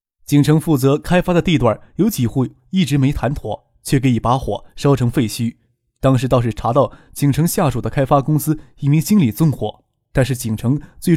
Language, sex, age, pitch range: Chinese, male, 20-39, 115-155 Hz